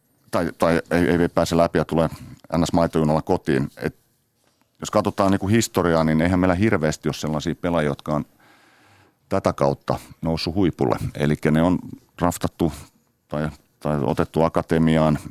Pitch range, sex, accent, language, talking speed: 75-95 Hz, male, native, Finnish, 140 wpm